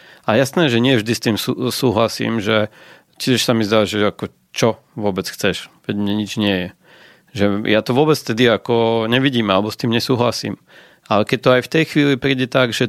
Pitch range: 110-125 Hz